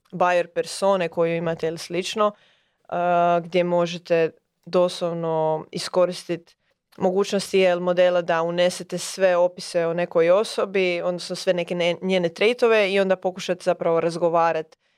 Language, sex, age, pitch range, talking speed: Croatian, female, 20-39, 165-190 Hz, 130 wpm